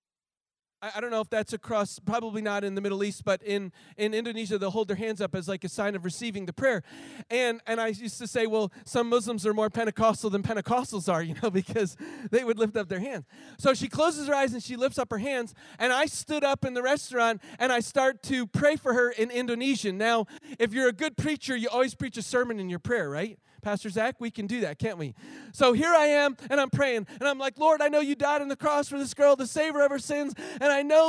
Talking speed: 255 wpm